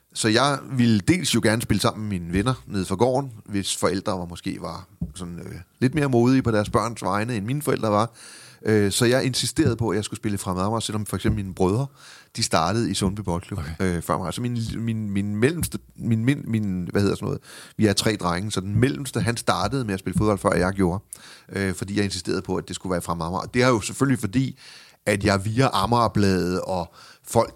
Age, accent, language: 30-49, native, Danish